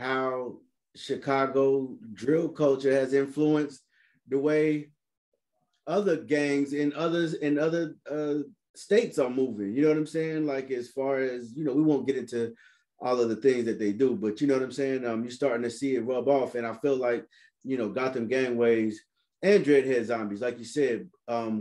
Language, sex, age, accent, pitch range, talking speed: English, male, 30-49, American, 115-145 Hz, 190 wpm